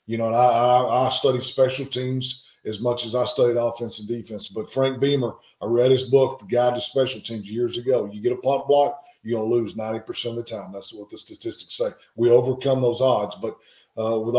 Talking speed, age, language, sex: 230 wpm, 40-59, English, male